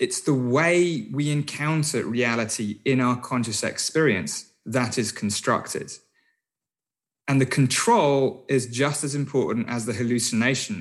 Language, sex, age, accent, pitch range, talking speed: English, male, 20-39, British, 110-150 Hz, 130 wpm